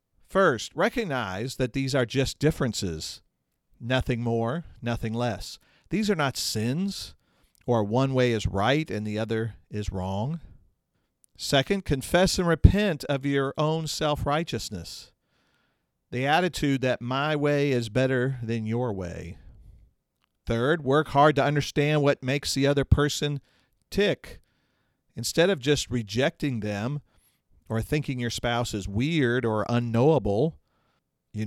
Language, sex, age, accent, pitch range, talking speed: English, male, 50-69, American, 110-145 Hz, 130 wpm